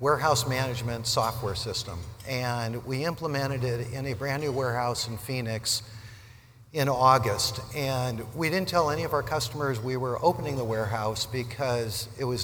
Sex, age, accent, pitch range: male, 50-69, American, 115-135 Hz